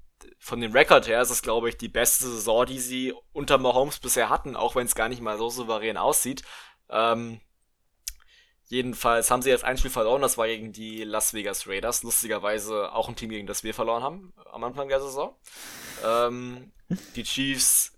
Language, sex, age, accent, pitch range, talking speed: German, male, 20-39, German, 110-130 Hz, 190 wpm